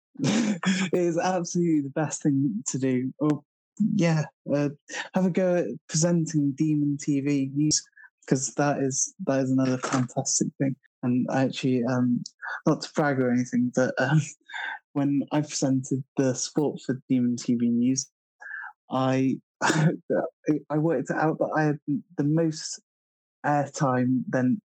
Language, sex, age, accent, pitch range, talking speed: English, male, 20-39, British, 130-160 Hz, 145 wpm